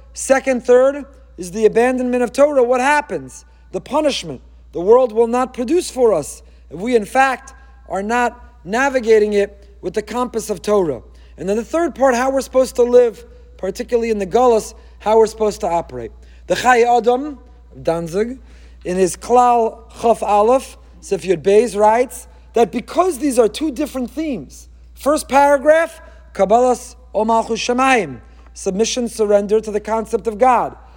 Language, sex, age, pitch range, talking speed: English, male, 40-59, 205-265 Hz, 155 wpm